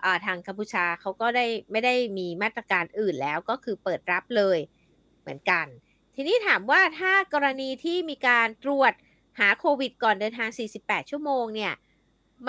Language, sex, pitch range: Thai, female, 205-270 Hz